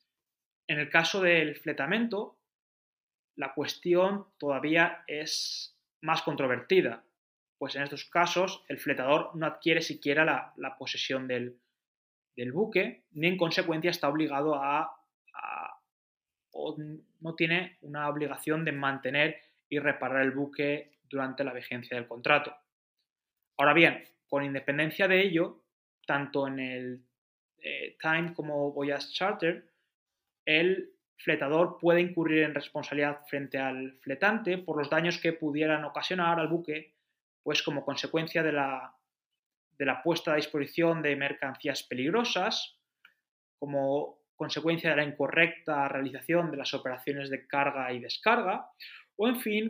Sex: male